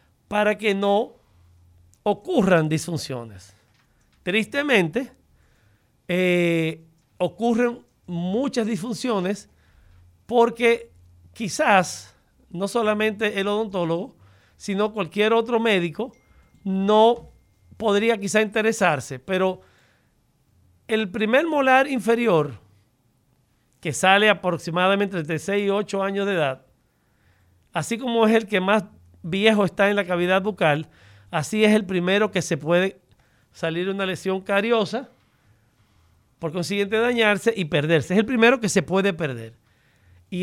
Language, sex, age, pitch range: Spanish, male, 40-59, 150-215 Hz